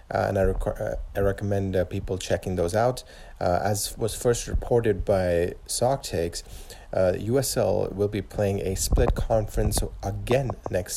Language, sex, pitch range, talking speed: English, male, 95-105 Hz, 165 wpm